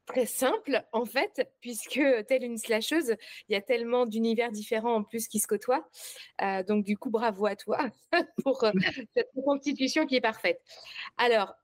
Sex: female